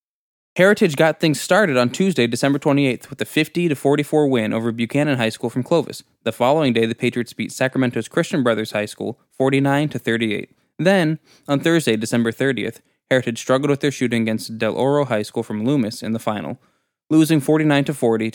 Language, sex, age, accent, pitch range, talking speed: English, male, 20-39, American, 115-145 Hz, 170 wpm